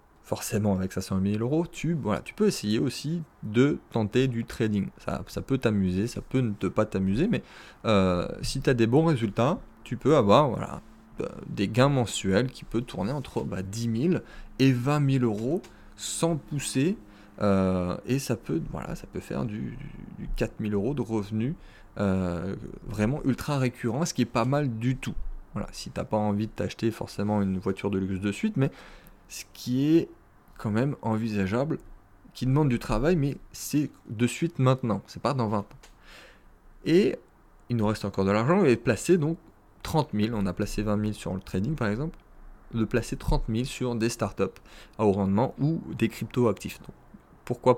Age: 30-49